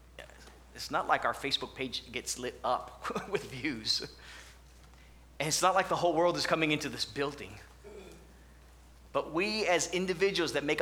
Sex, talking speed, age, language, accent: male, 160 wpm, 30-49, English, American